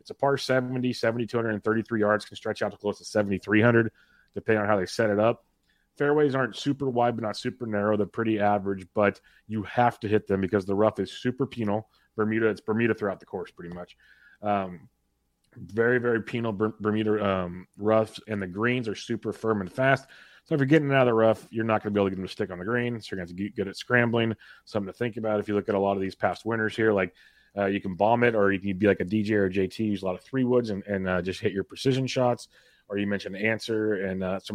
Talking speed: 260 wpm